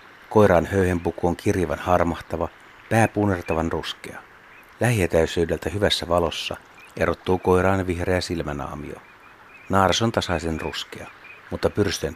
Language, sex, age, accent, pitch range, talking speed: Finnish, male, 60-79, native, 85-100 Hz, 100 wpm